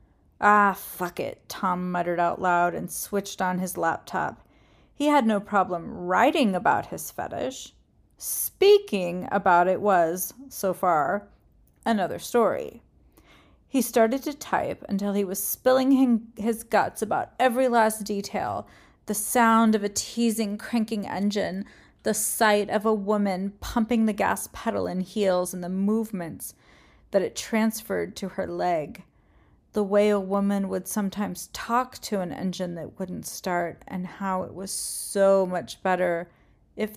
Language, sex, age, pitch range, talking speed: English, female, 30-49, 185-230 Hz, 145 wpm